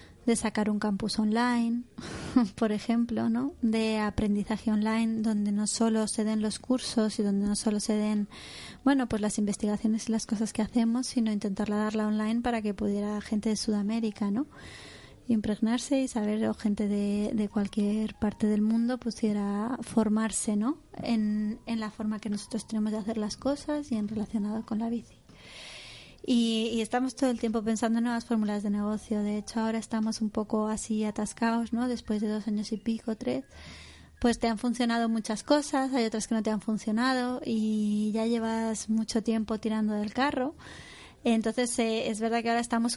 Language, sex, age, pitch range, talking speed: Spanish, female, 20-39, 215-235 Hz, 185 wpm